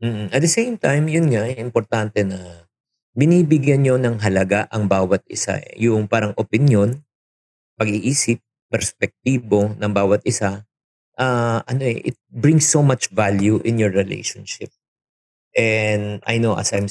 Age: 50-69